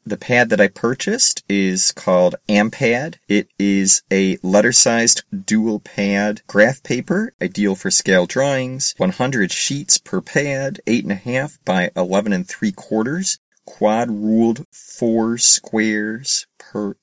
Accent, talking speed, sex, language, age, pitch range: American, 140 wpm, male, English, 30-49, 95-130 Hz